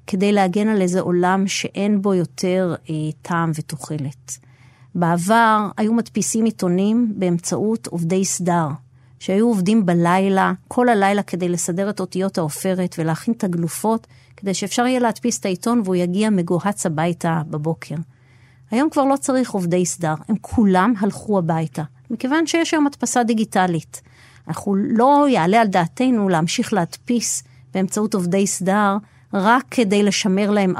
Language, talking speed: Hebrew, 140 wpm